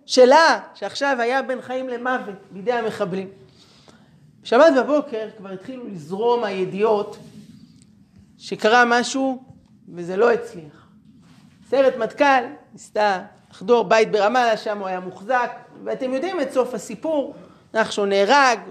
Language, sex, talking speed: Hebrew, male, 115 wpm